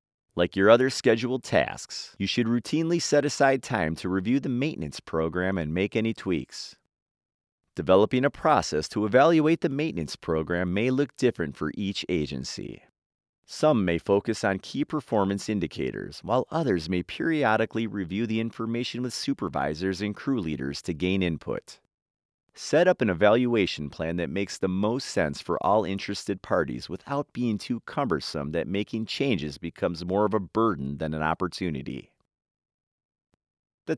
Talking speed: 150 wpm